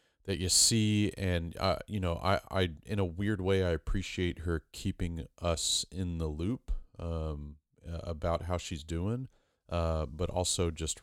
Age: 30-49